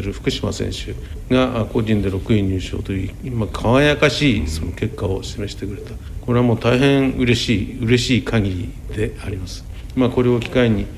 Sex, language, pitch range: male, Japanese, 95-120 Hz